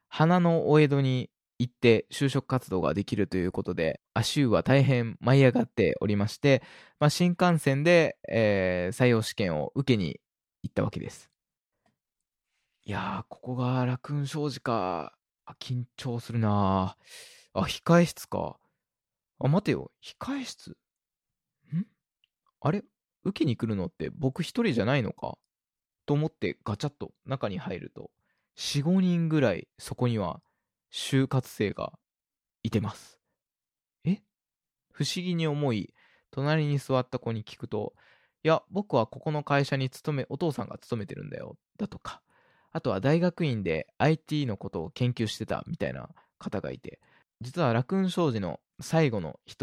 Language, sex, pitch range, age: Japanese, male, 115-165 Hz, 20-39